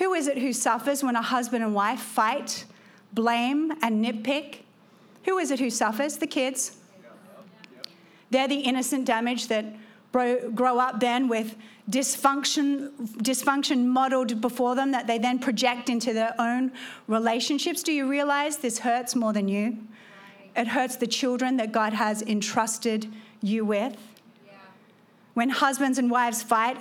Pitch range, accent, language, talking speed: 220-265 Hz, Australian, English, 150 wpm